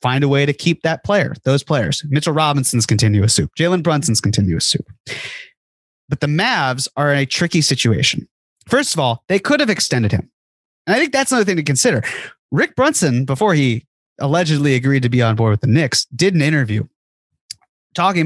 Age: 30-49